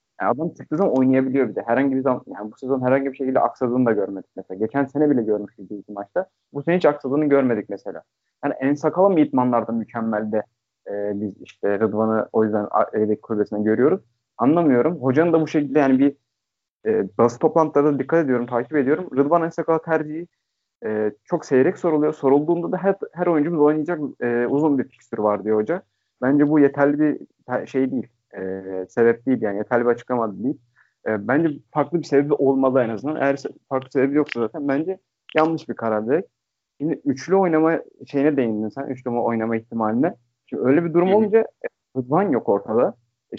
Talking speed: 180 wpm